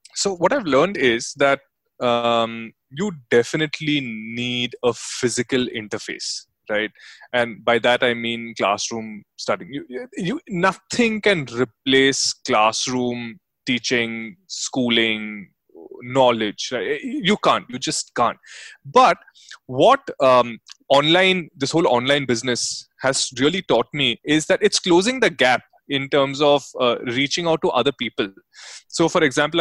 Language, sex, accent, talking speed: English, male, Indian, 135 wpm